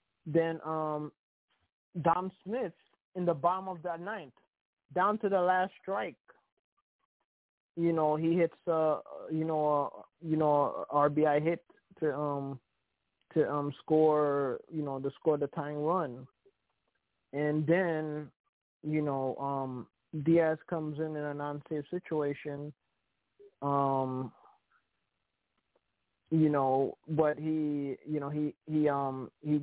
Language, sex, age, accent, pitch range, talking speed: English, male, 20-39, American, 140-165 Hz, 130 wpm